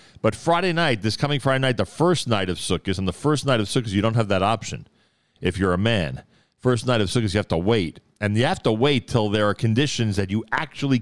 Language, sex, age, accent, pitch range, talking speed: English, male, 40-59, American, 90-115 Hz, 255 wpm